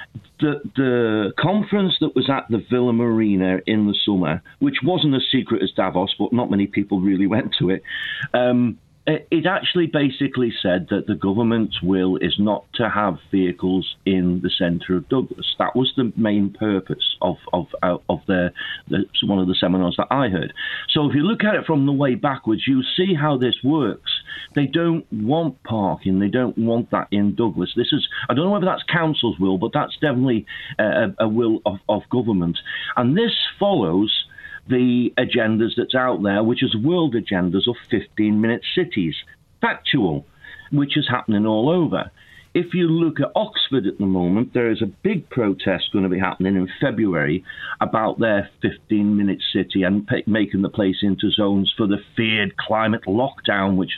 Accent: British